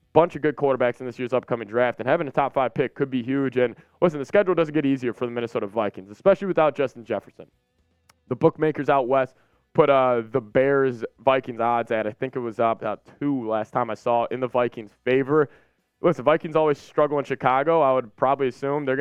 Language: English